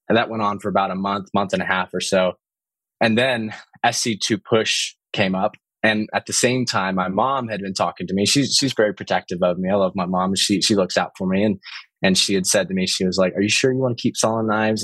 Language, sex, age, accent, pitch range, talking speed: English, male, 20-39, American, 95-120 Hz, 270 wpm